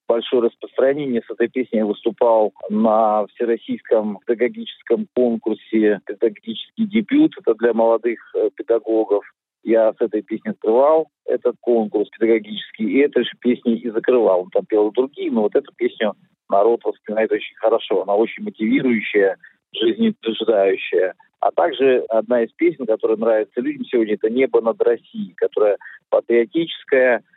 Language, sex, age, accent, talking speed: Russian, male, 50-69, native, 140 wpm